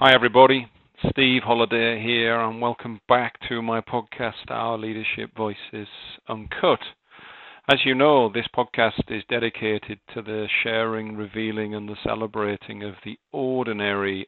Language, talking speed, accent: English, 135 wpm, British